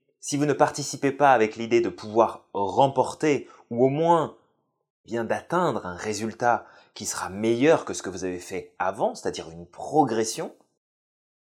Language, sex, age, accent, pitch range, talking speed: French, male, 20-39, French, 120-170 Hz, 155 wpm